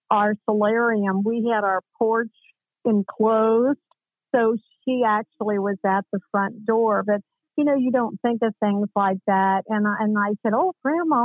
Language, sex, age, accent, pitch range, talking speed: English, female, 50-69, American, 200-230 Hz, 170 wpm